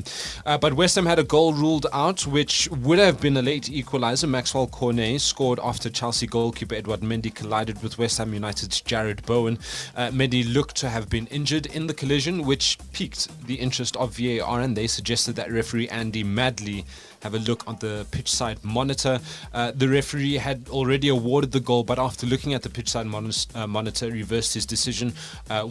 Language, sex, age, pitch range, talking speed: English, male, 20-39, 110-140 Hz, 195 wpm